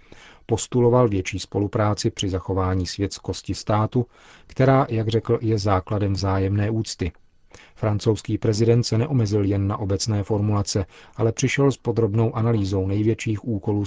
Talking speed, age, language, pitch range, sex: 125 wpm, 40-59, Czech, 100-115 Hz, male